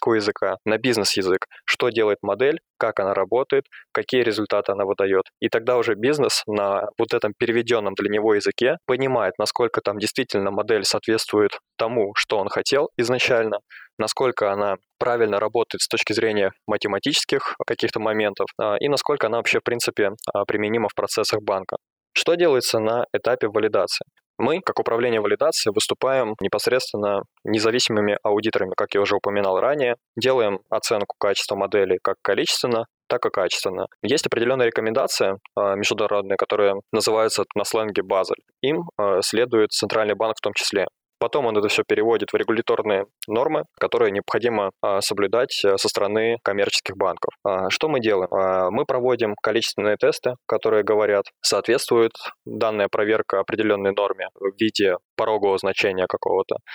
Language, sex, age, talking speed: Russian, male, 20-39, 140 wpm